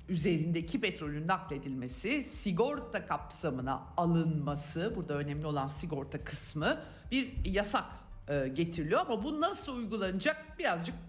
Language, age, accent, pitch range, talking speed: Turkish, 50-69, native, 150-215 Hz, 110 wpm